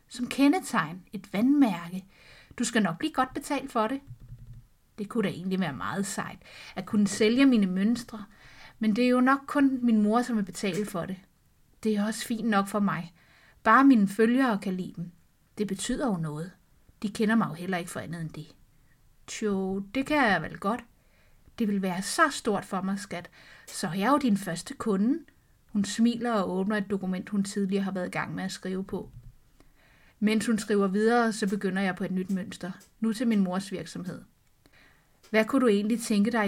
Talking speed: 205 wpm